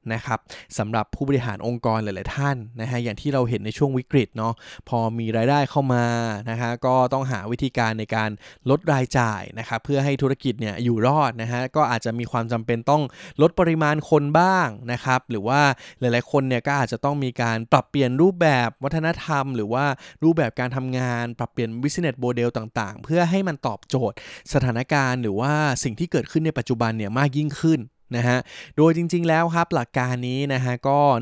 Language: Thai